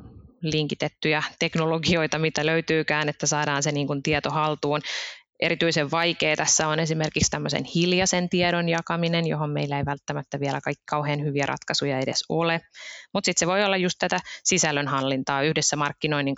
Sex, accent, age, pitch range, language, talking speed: female, native, 20-39, 140-160 Hz, Finnish, 150 wpm